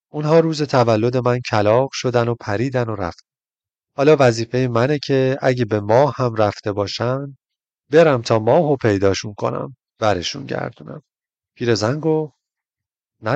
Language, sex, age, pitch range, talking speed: Persian, male, 30-49, 115-140 Hz, 140 wpm